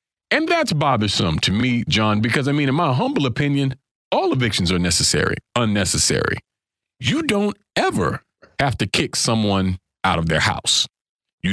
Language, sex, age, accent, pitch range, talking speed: English, male, 40-59, American, 95-150 Hz, 155 wpm